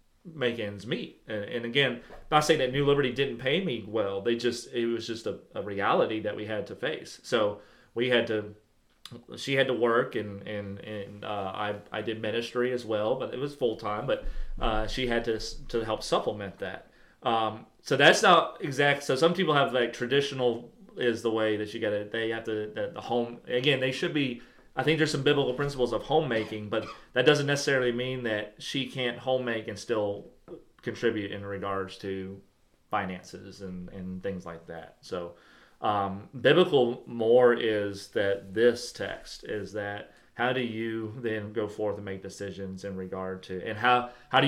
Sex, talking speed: male, 190 wpm